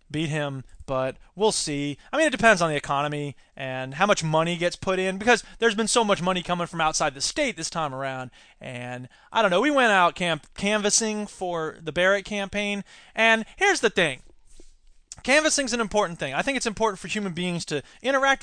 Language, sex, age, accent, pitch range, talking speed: English, male, 20-39, American, 175-245 Hz, 200 wpm